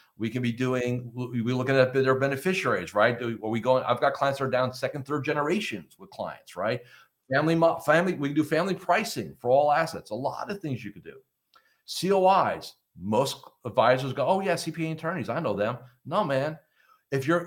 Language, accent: English, American